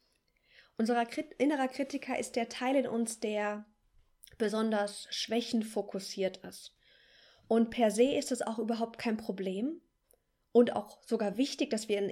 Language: German